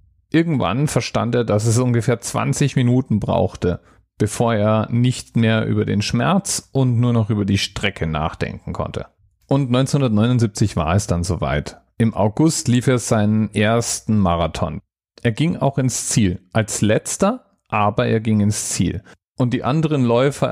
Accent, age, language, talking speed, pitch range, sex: German, 40-59, German, 155 wpm, 100-130 Hz, male